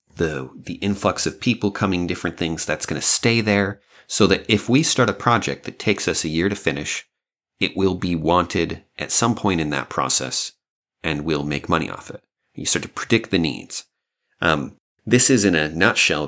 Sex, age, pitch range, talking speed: male, 30-49, 80-105 Hz, 205 wpm